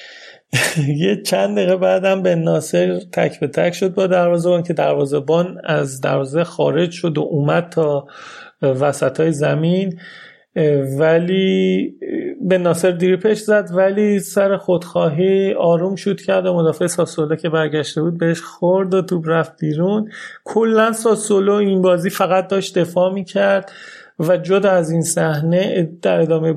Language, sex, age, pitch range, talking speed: Persian, male, 30-49, 155-190 Hz, 140 wpm